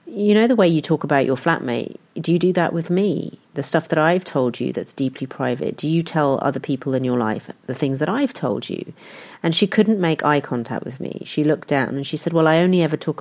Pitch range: 135-170 Hz